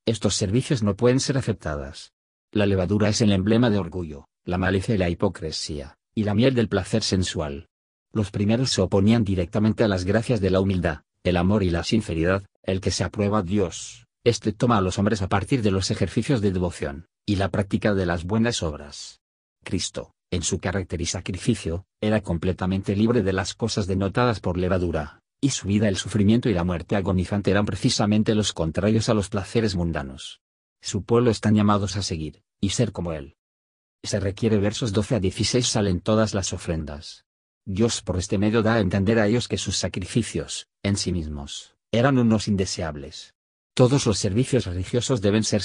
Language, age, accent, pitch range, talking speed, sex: Spanish, 50-69, Spanish, 90-110 Hz, 185 wpm, male